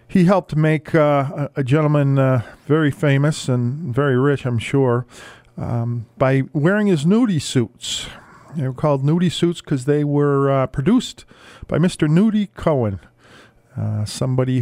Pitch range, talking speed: 120-145 Hz, 150 wpm